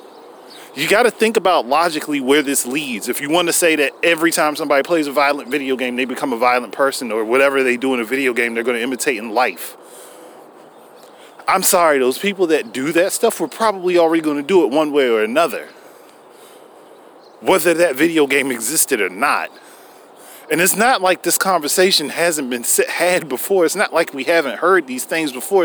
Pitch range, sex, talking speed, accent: 140-190 Hz, male, 205 wpm, American